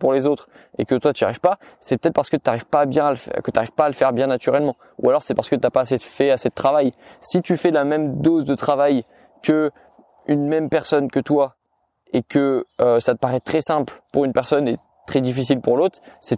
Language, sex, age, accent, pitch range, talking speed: French, male, 20-39, French, 120-145 Hz, 265 wpm